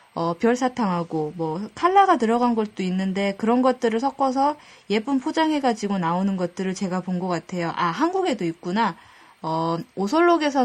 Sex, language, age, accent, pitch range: female, Korean, 20-39, native, 190-265 Hz